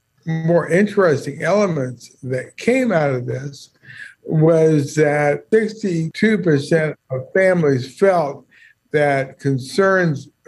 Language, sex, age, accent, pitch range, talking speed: English, male, 60-79, American, 135-170 Hz, 90 wpm